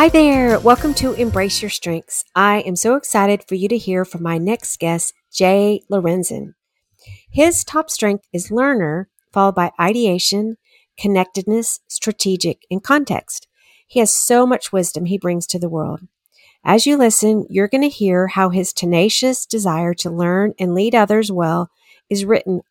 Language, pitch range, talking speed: English, 175-225 Hz, 165 wpm